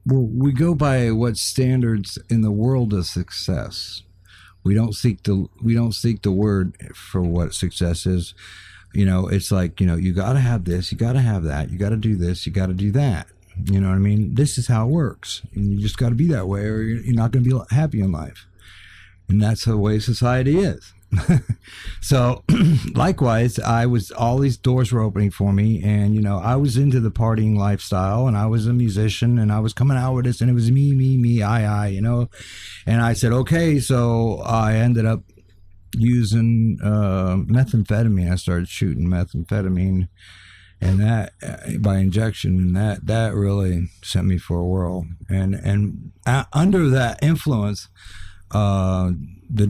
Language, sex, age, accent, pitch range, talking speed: English, male, 50-69, American, 95-120 Hz, 195 wpm